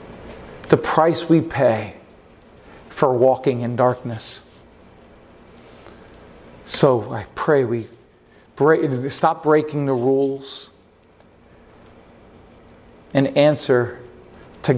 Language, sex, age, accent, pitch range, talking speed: English, male, 40-59, American, 135-190 Hz, 80 wpm